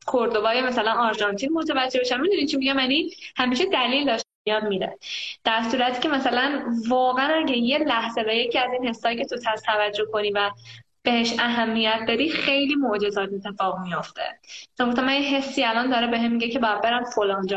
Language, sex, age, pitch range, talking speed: Persian, female, 10-29, 220-275 Hz, 185 wpm